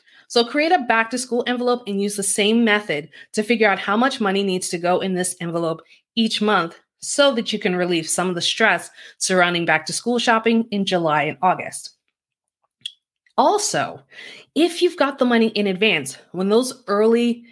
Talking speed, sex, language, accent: 175 wpm, female, English, American